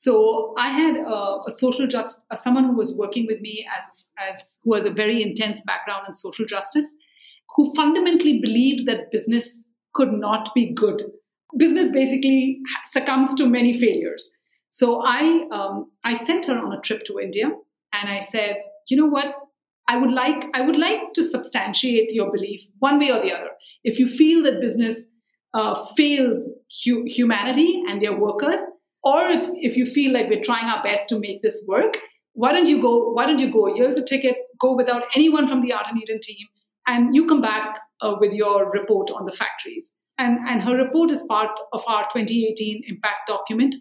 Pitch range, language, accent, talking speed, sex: 215-295 Hz, English, Indian, 190 wpm, female